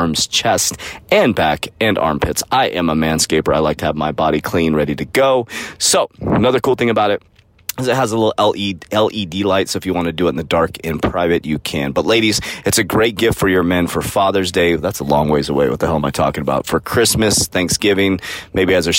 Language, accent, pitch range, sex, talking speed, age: English, American, 85-115 Hz, male, 245 wpm, 30-49